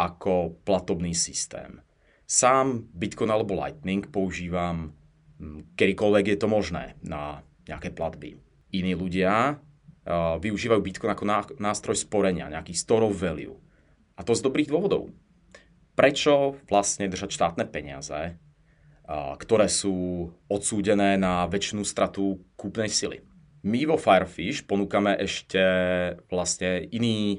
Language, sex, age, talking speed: Czech, male, 30-49, 110 wpm